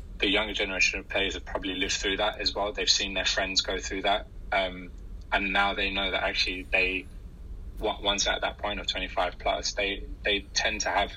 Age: 20-39